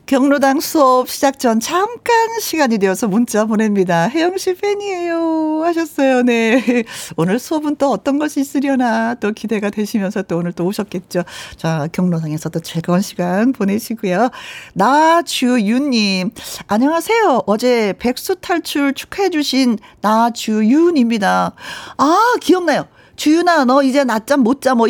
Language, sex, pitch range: Korean, female, 205-280 Hz